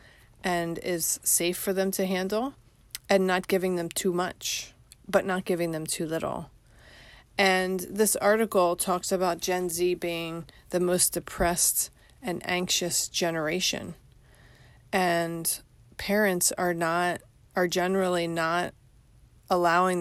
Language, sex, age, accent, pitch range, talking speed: English, female, 30-49, American, 165-190 Hz, 125 wpm